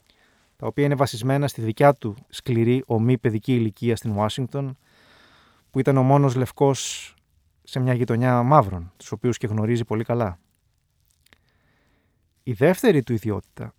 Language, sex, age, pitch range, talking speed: Greek, male, 30-49, 110-135 Hz, 140 wpm